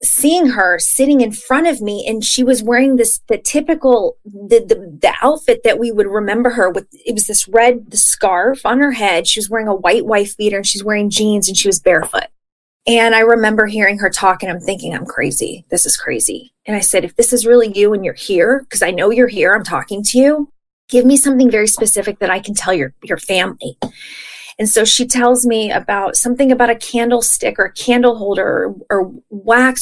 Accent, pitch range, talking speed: American, 200-250 Hz, 220 wpm